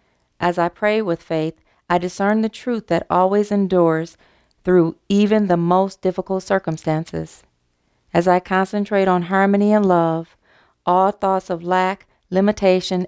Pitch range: 165-210 Hz